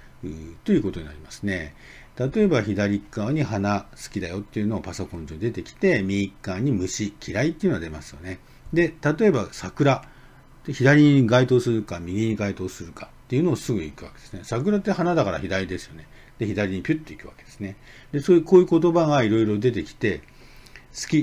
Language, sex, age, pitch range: Japanese, male, 50-69, 100-150 Hz